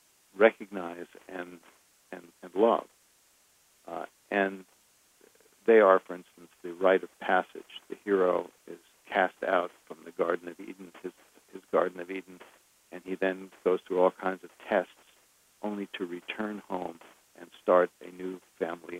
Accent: American